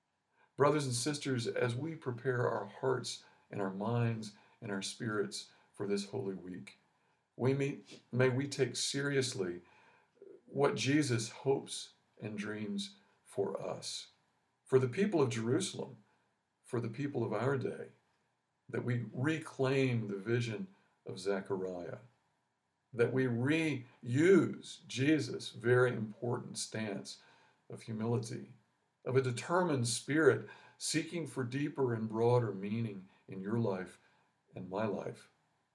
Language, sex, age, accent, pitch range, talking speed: English, male, 50-69, American, 105-135 Hz, 125 wpm